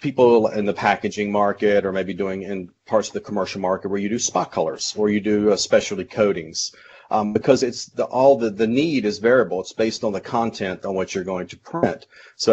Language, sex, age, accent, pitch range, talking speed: English, male, 40-59, American, 100-115 Hz, 220 wpm